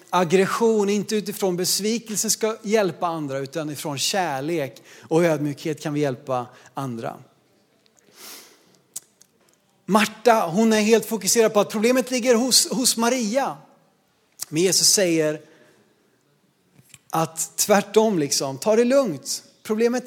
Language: Swedish